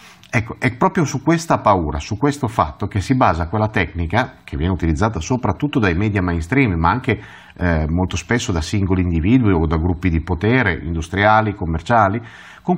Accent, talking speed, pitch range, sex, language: native, 175 wpm, 95-135 Hz, male, Italian